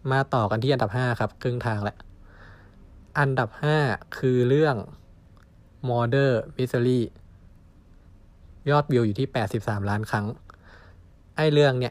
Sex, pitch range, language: male, 90-125 Hz, Thai